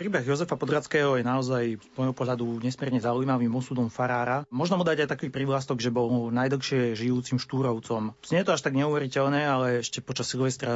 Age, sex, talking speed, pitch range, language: 30-49, male, 180 wpm, 125-135 Hz, Slovak